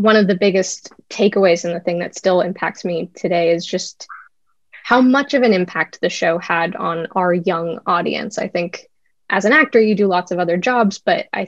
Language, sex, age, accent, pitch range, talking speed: English, female, 10-29, American, 185-230 Hz, 210 wpm